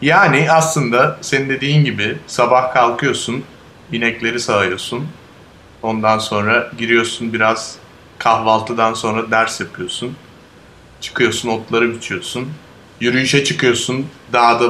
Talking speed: 95 wpm